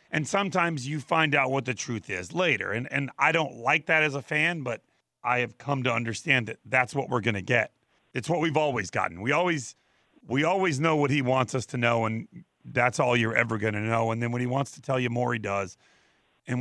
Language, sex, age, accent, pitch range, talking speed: English, male, 40-59, American, 125-185 Hz, 245 wpm